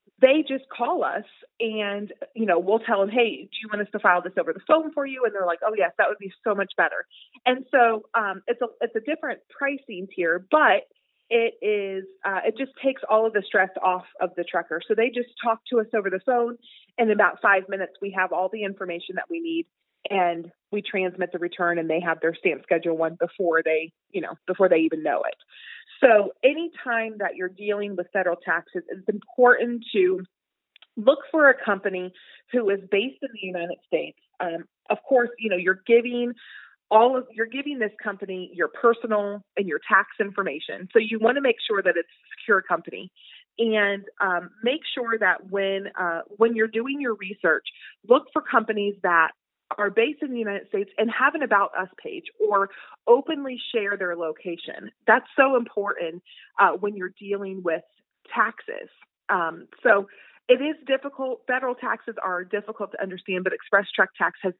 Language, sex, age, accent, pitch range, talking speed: English, female, 30-49, American, 185-245 Hz, 195 wpm